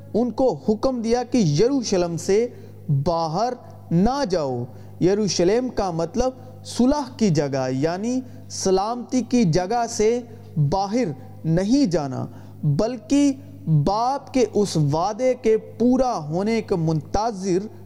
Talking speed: 115 wpm